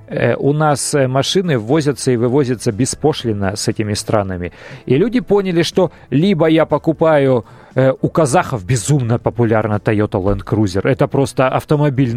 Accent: native